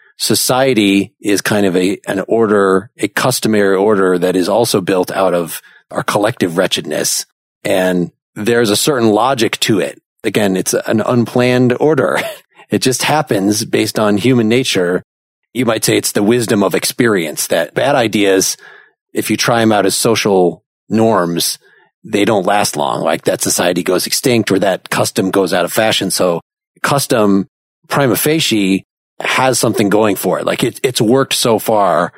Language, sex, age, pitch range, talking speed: English, male, 40-59, 95-125 Hz, 165 wpm